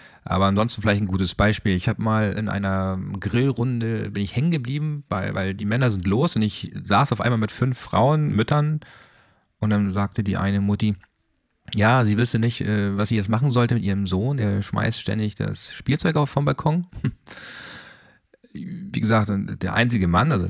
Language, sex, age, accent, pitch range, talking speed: German, male, 40-59, German, 95-125 Hz, 185 wpm